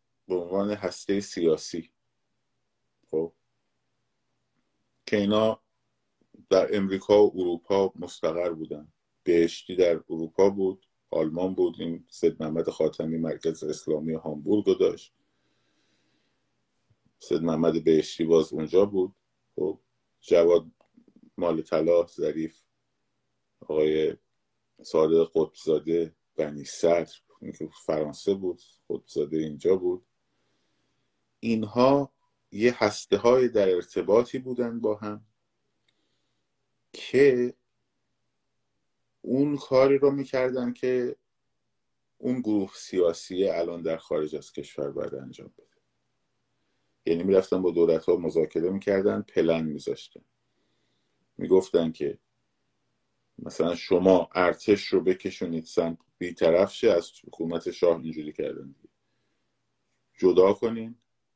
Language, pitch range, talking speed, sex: Persian, 80-115 Hz, 95 wpm, male